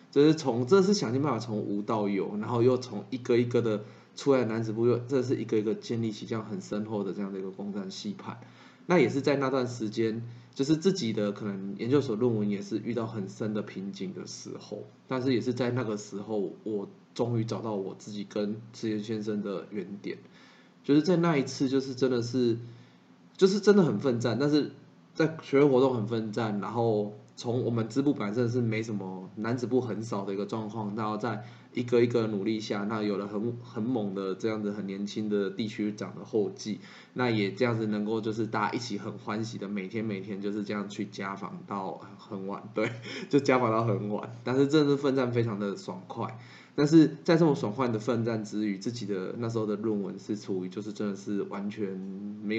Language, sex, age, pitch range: Chinese, male, 20-39, 105-125 Hz